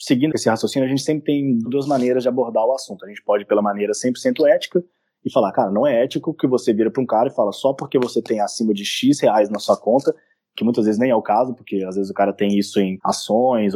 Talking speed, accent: 265 wpm, Brazilian